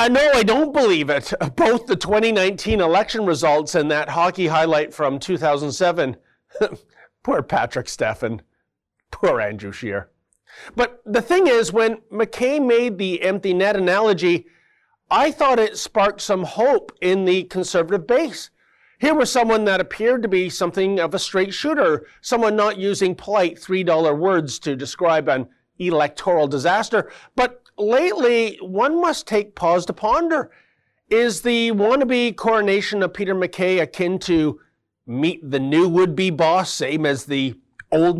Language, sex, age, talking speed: English, male, 40-59, 150 wpm